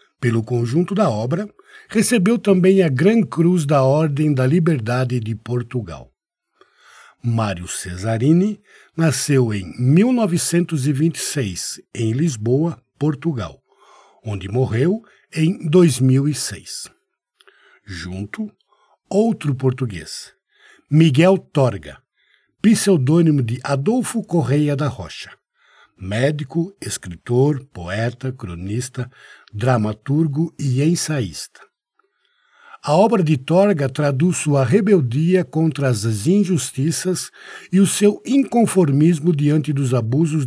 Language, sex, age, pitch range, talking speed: Portuguese, male, 60-79, 125-180 Hz, 90 wpm